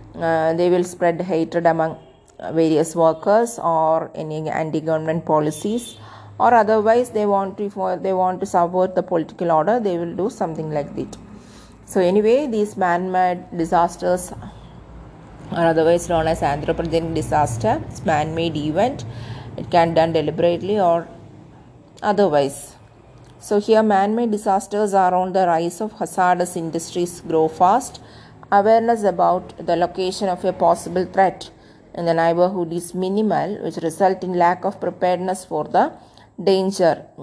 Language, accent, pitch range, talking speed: English, Indian, 160-195 Hz, 140 wpm